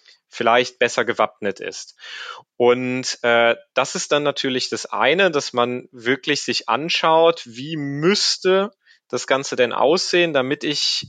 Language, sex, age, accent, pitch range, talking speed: German, male, 30-49, German, 115-135 Hz, 135 wpm